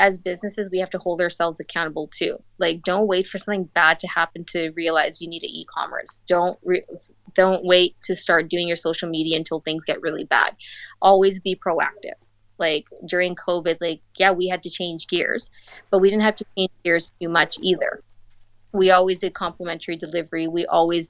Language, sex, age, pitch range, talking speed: English, female, 20-39, 165-185 Hz, 195 wpm